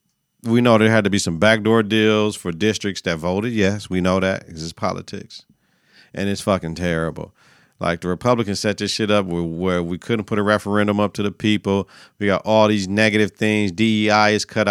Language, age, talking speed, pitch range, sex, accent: English, 40-59, 205 wpm, 95-110 Hz, male, American